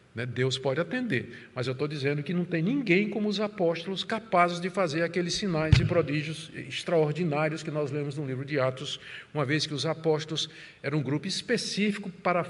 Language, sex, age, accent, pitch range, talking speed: Portuguese, male, 50-69, Brazilian, 150-205 Hz, 190 wpm